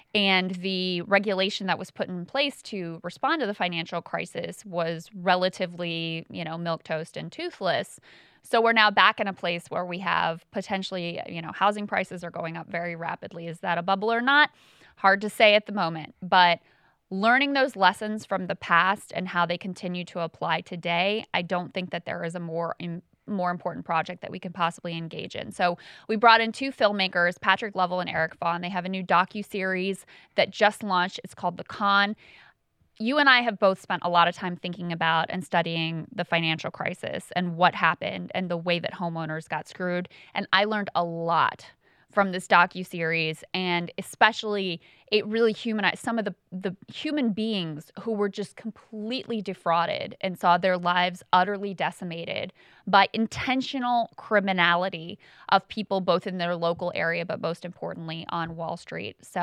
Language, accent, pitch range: English, American, 170-210 Hz